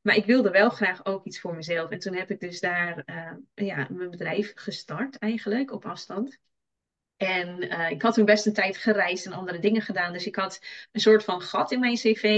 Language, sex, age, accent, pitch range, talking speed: Dutch, female, 20-39, Dutch, 185-225 Hz, 225 wpm